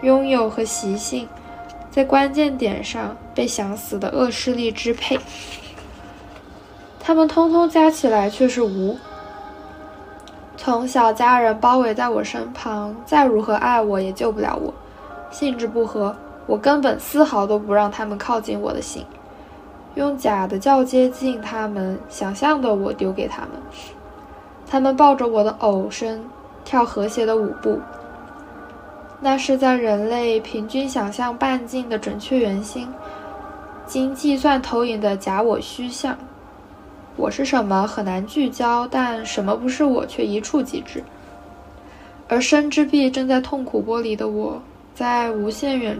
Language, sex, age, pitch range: Chinese, female, 10-29, 205-260 Hz